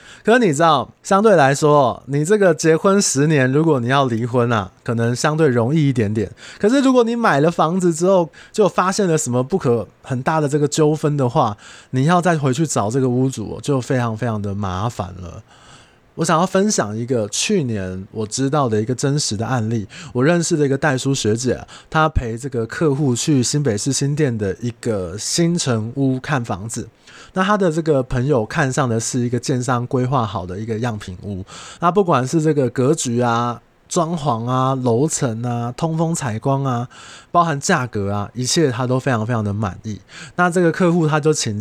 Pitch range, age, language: 115-160 Hz, 20-39, Chinese